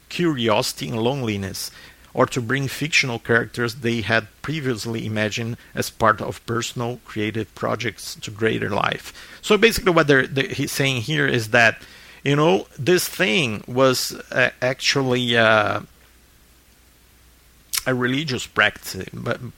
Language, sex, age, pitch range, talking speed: English, male, 50-69, 110-145 Hz, 125 wpm